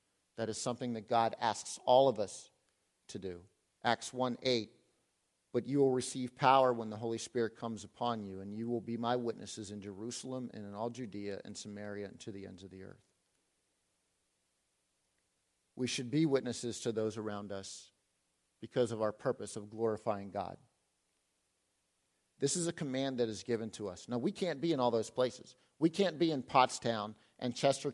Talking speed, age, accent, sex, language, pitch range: 185 wpm, 50-69, American, male, English, 100-130 Hz